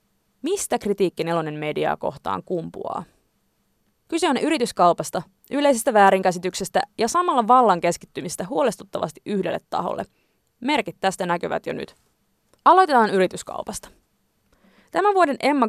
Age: 20-39